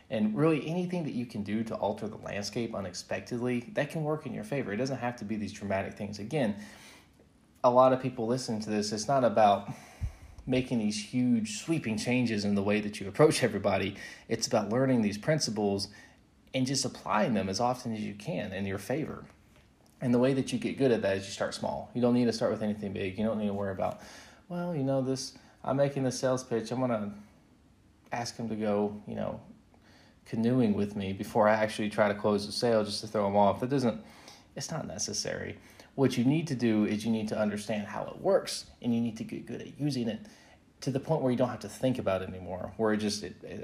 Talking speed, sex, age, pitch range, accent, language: 235 wpm, male, 20-39, 105-125 Hz, American, English